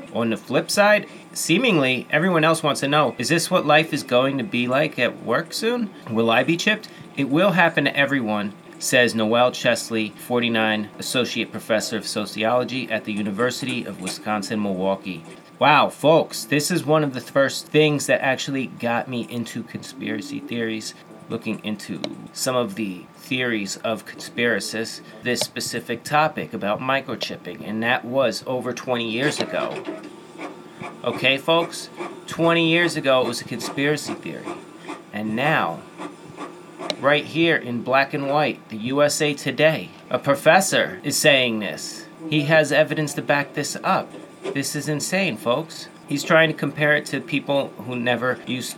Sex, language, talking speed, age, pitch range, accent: male, English, 155 wpm, 30-49, 115-155 Hz, American